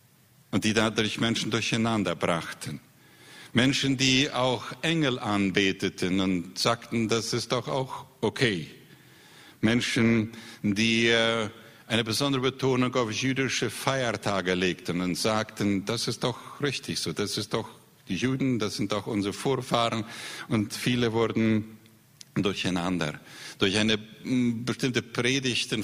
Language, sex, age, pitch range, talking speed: Spanish, male, 50-69, 105-125 Hz, 120 wpm